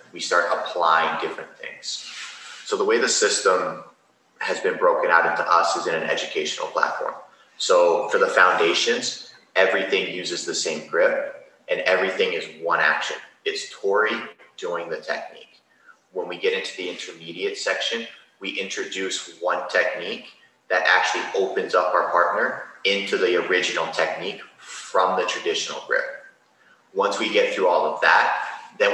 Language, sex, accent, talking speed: English, male, American, 150 wpm